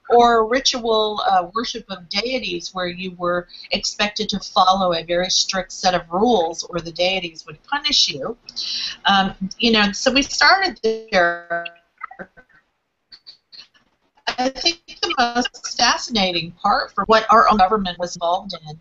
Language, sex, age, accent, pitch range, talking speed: English, female, 50-69, American, 175-220 Hz, 145 wpm